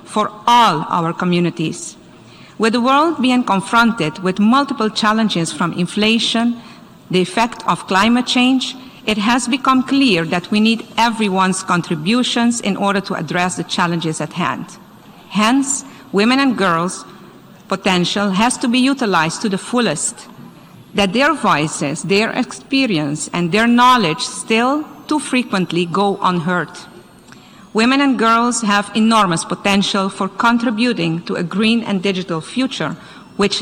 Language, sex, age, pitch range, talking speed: English, female, 50-69, 180-235 Hz, 135 wpm